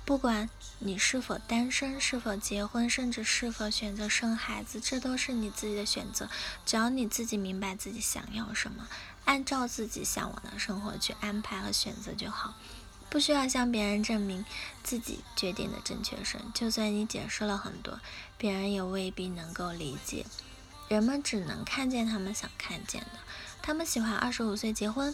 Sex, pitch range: female, 205-250 Hz